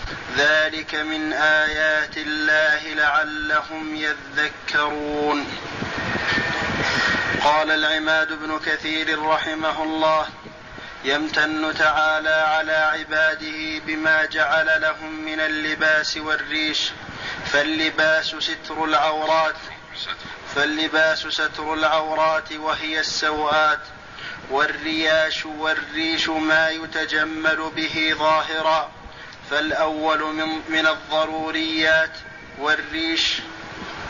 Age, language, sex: 30-49, Arabic, male